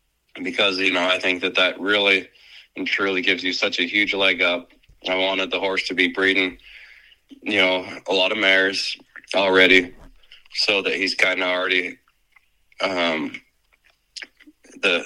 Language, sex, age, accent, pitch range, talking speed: English, male, 20-39, American, 85-95 Hz, 155 wpm